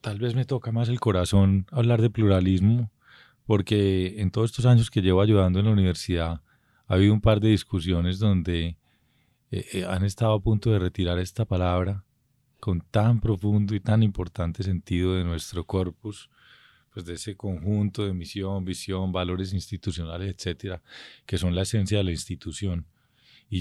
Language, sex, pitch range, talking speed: Spanish, male, 90-115 Hz, 165 wpm